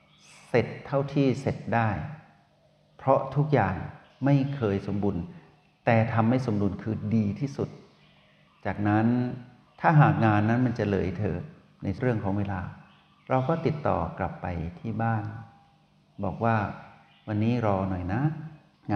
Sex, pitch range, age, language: male, 100-140 Hz, 60-79, Thai